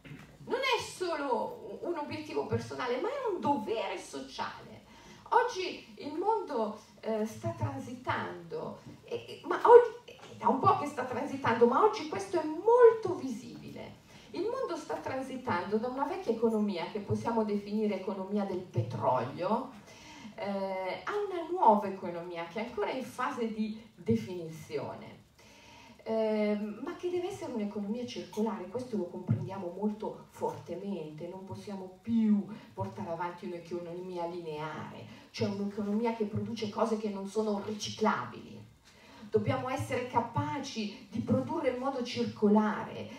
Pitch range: 205-300 Hz